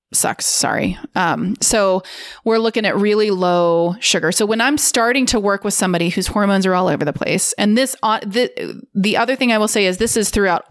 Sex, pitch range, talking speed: female, 185-225 Hz, 220 wpm